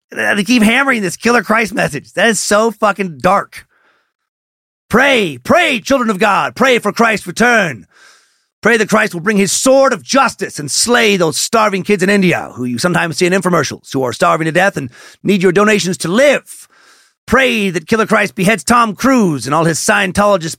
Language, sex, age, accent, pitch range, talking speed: English, male, 40-59, American, 145-210 Hz, 190 wpm